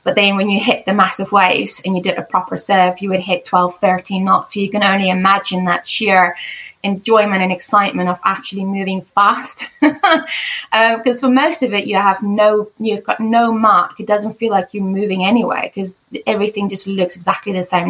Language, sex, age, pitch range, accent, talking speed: English, female, 20-39, 190-225 Hz, British, 205 wpm